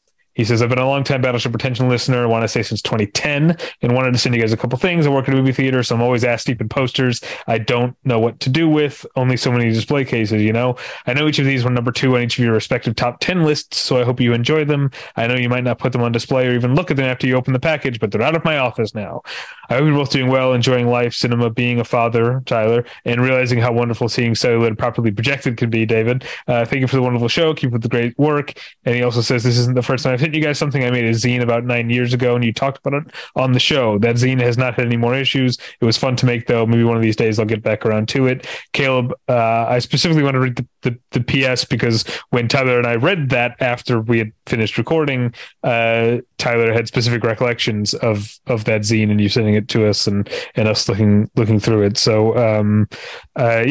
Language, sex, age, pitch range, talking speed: English, male, 30-49, 115-130 Hz, 265 wpm